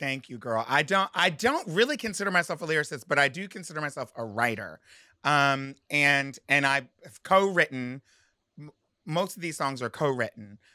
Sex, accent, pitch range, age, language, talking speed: male, American, 115-145 Hz, 30-49, English, 175 wpm